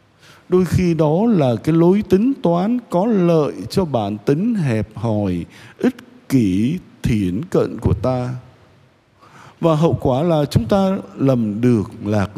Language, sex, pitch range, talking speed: Vietnamese, male, 110-155 Hz, 145 wpm